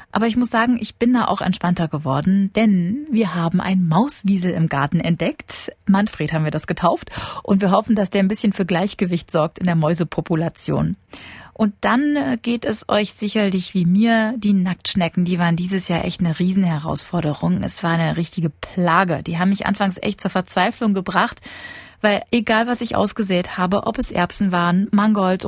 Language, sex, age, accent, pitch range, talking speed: German, female, 30-49, German, 175-210 Hz, 180 wpm